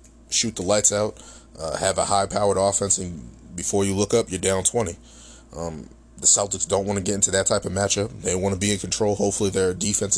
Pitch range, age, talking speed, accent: 90-105 Hz, 20-39, 225 wpm, American